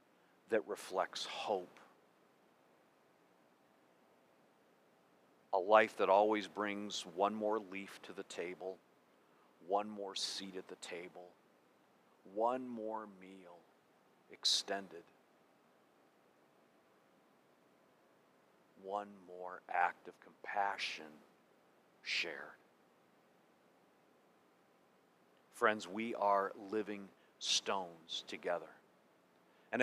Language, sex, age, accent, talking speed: English, male, 50-69, American, 75 wpm